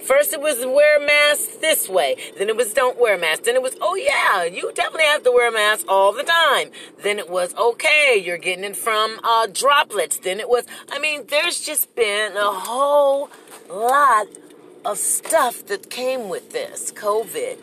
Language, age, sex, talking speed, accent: English, 40-59, female, 195 wpm, American